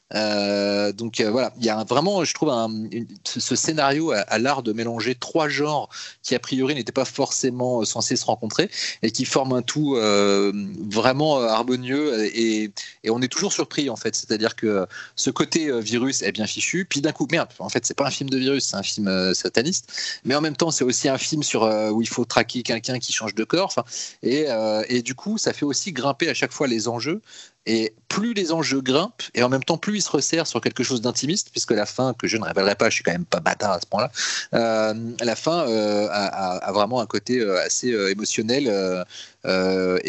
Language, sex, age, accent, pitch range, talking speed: French, male, 30-49, French, 105-140 Hz, 230 wpm